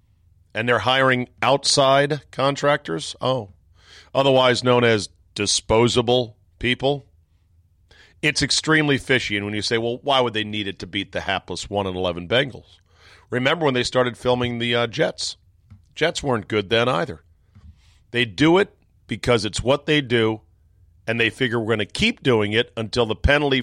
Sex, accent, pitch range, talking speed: male, American, 95-130 Hz, 160 wpm